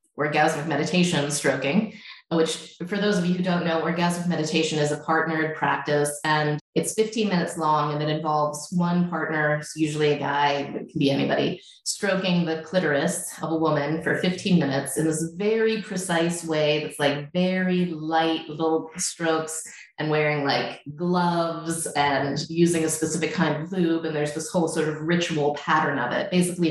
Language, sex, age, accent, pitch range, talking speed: English, female, 20-39, American, 150-180 Hz, 170 wpm